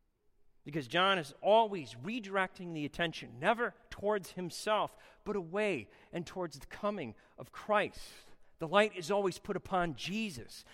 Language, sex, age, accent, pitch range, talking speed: English, male, 40-59, American, 140-200 Hz, 140 wpm